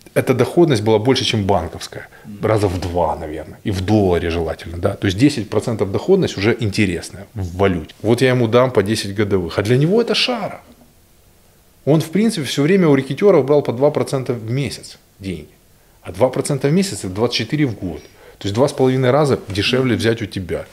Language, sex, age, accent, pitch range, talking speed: Russian, male, 20-39, native, 100-130 Hz, 190 wpm